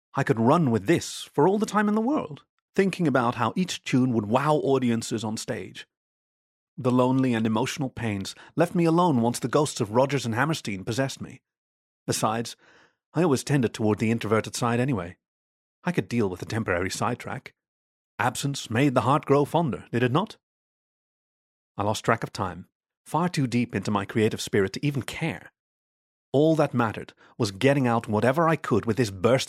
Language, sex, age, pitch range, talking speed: English, male, 30-49, 110-145 Hz, 185 wpm